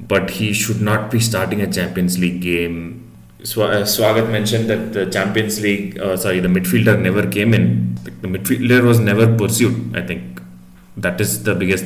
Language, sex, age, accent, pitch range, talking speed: English, male, 30-49, Indian, 90-115 Hz, 180 wpm